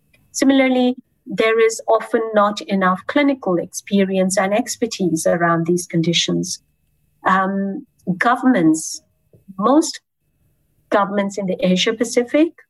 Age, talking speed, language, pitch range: 50-69, 95 wpm, English, 175-235 Hz